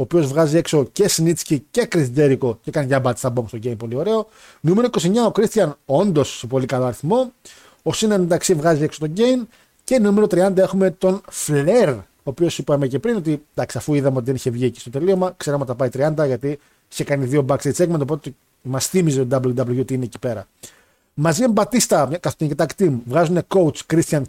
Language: Greek